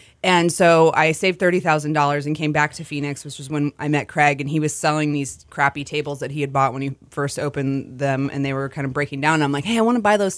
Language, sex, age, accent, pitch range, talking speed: English, female, 20-39, American, 135-150 Hz, 275 wpm